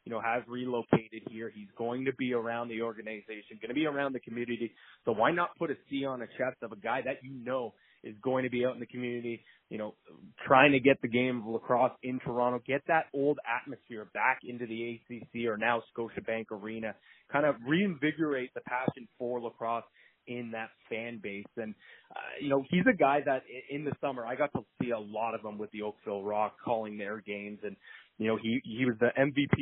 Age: 20-39